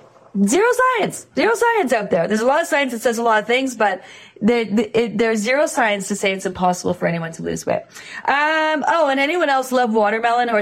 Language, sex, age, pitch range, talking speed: English, female, 30-49, 185-235 Hz, 215 wpm